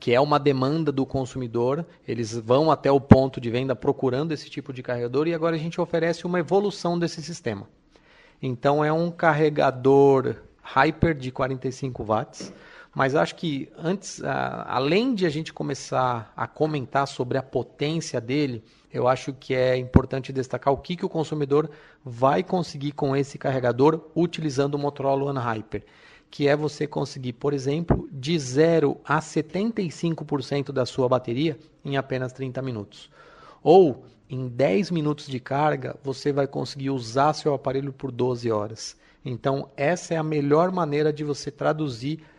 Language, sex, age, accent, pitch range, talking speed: Portuguese, male, 30-49, Brazilian, 130-155 Hz, 160 wpm